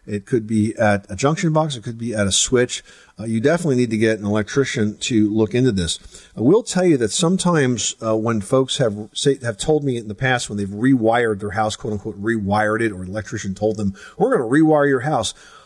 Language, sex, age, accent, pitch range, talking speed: English, male, 40-59, American, 105-130 Hz, 235 wpm